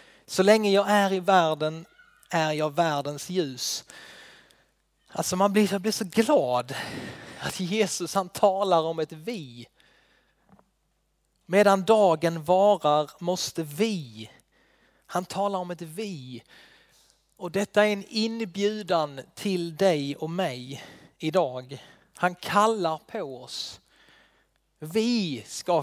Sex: male